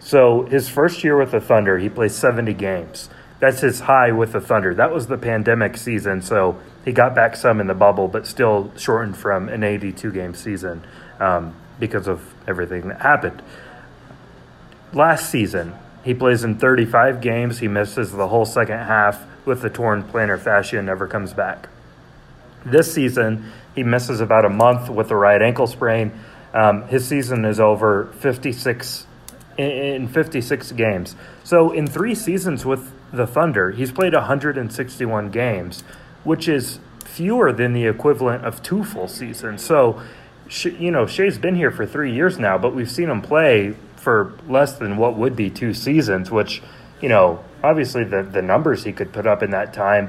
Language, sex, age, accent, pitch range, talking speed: English, male, 30-49, American, 105-135 Hz, 175 wpm